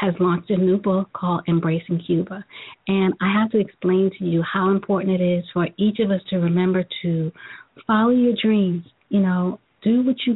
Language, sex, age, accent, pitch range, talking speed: English, female, 40-59, American, 170-200 Hz, 195 wpm